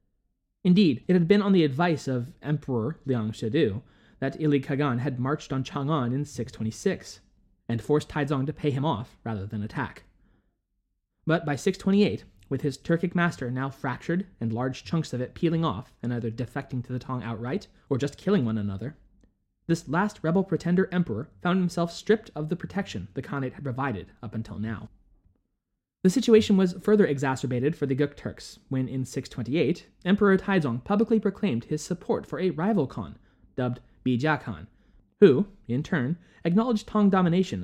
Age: 20-39